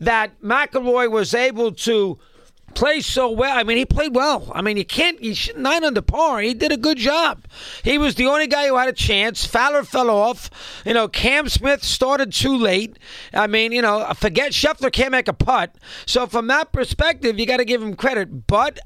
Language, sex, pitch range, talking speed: English, male, 205-260 Hz, 215 wpm